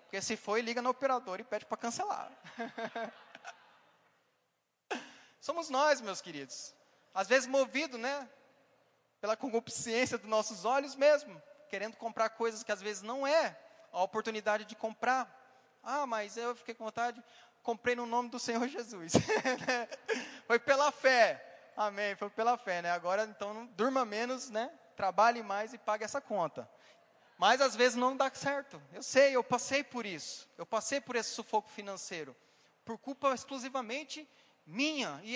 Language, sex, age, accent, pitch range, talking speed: Portuguese, male, 20-39, Brazilian, 220-275 Hz, 155 wpm